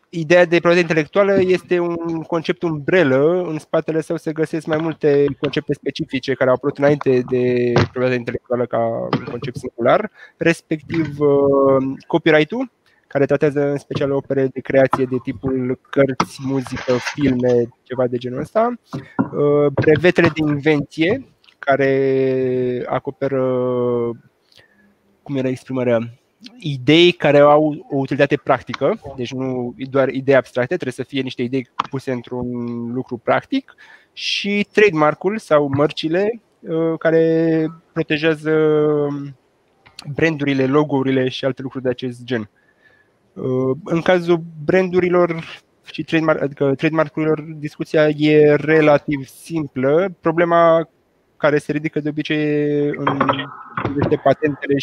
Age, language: 20-39, Romanian